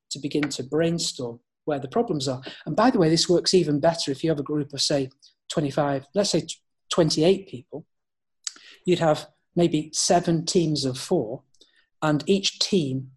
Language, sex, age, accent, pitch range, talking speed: English, male, 40-59, British, 140-170 Hz, 175 wpm